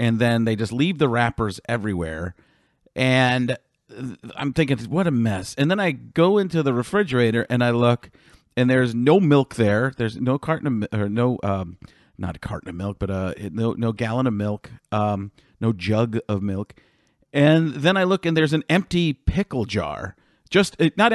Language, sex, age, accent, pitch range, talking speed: English, male, 50-69, American, 115-160 Hz, 185 wpm